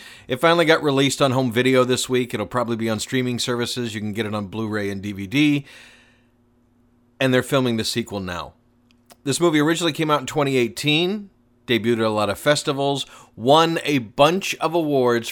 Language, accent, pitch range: English, American, 110-135 Hz